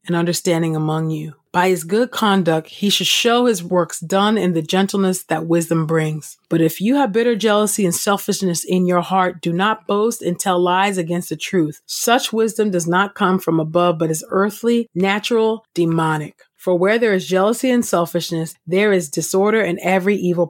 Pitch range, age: 170-210 Hz, 30-49